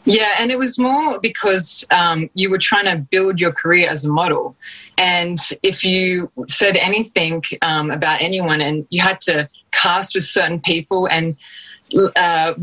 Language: English